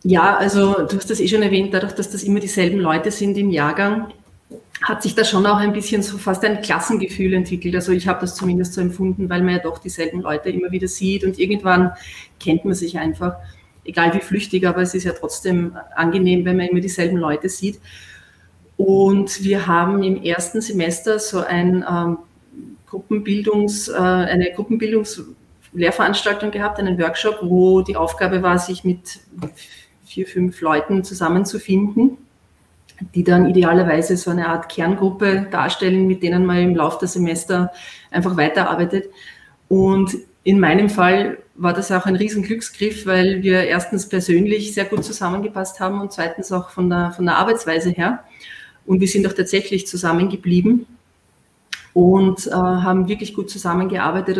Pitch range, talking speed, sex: 175-200 Hz, 160 wpm, female